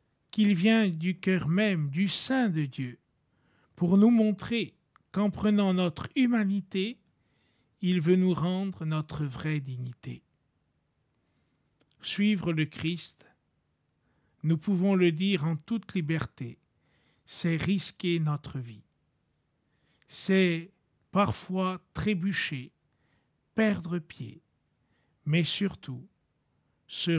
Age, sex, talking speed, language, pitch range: 50-69, male, 100 wpm, French, 150-205 Hz